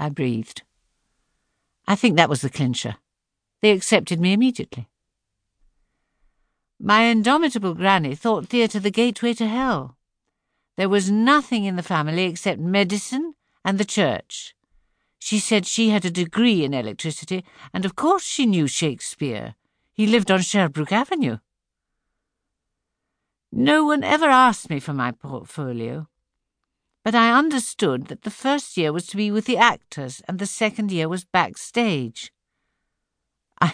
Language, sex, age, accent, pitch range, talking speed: English, female, 60-79, British, 155-230 Hz, 140 wpm